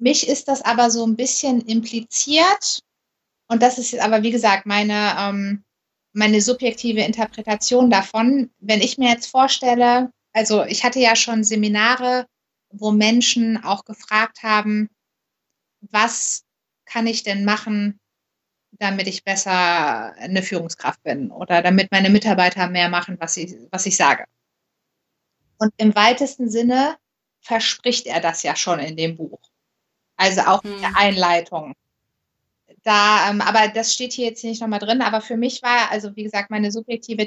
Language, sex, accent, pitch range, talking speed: German, female, German, 205-245 Hz, 155 wpm